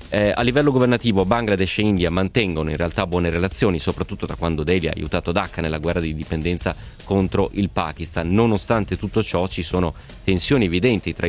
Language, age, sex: Italian, 30-49, male